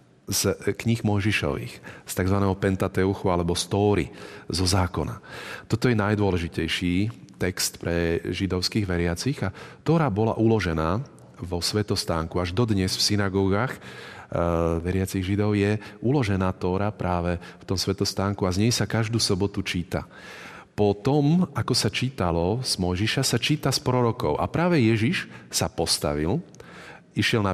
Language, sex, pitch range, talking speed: Slovak, male, 90-115 Hz, 135 wpm